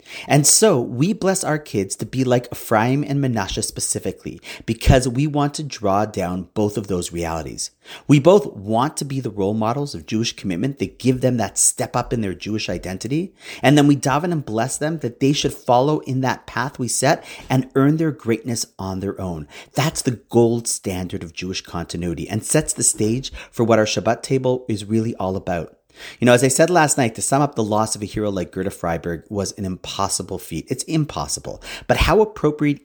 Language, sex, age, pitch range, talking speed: English, male, 40-59, 100-135 Hz, 210 wpm